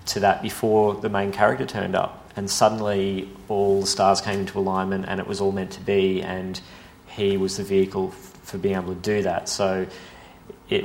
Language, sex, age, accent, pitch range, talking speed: English, male, 30-49, Australian, 95-105 Hz, 200 wpm